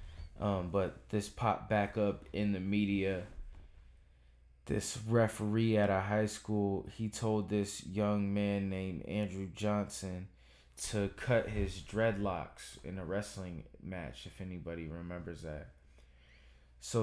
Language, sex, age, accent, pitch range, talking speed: English, male, 20-39, American, 75-105 Hz, 125 wpm